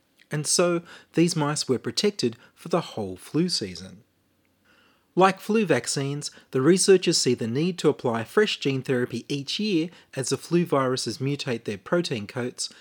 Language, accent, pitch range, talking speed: English, Australian, 110-170 Hz, 160 wpm